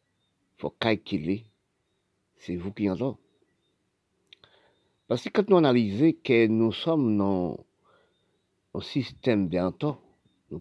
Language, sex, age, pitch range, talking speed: French, male, 50-69, 95-120 Hz, 115 wpm